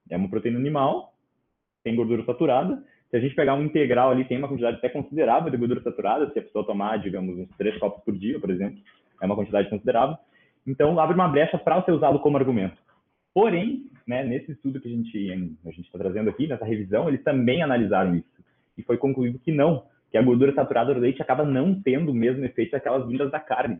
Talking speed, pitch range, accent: 215 wpm, 115-155 Hz, Brazilian